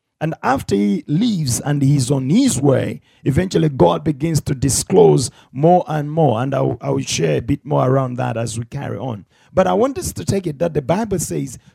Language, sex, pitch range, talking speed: English, male, 130-180 Hz, 215 wpm